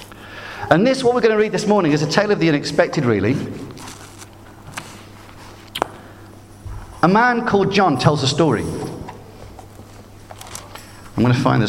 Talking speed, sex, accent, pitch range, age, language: 145 wpm, male, British, 105-175 Hz, 50-69, English